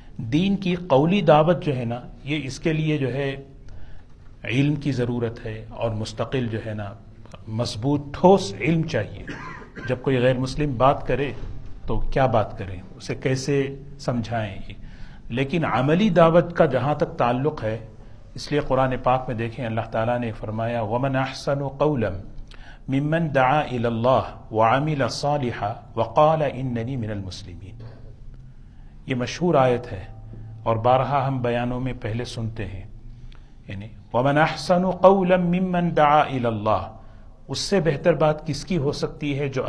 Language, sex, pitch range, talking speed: Urdu, male, 110-145 Hz, 140 wpm